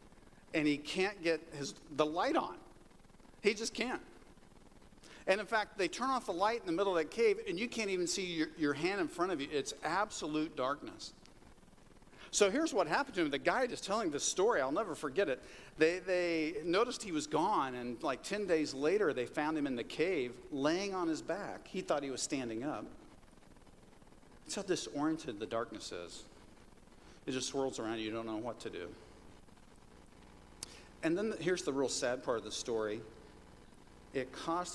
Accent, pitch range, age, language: American, 125-190 Hz, 50-69, English